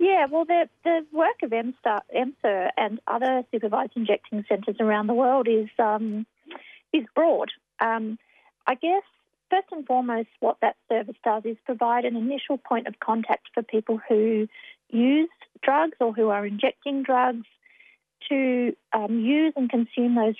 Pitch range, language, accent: 220-275 Hz, English, Australian